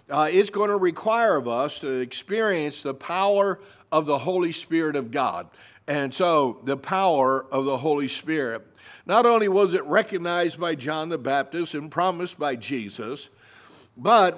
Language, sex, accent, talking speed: English, male, American, 165 wpm